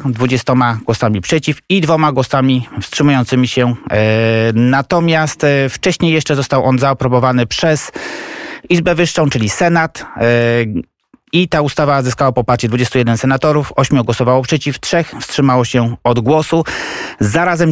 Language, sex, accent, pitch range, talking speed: Polish, male, native, 125-160 Hz, 120 wpm